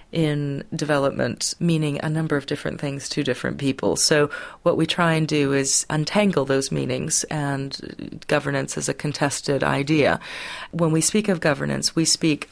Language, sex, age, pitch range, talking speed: English, female, 40-59, 140-160 Hz, 165 wpm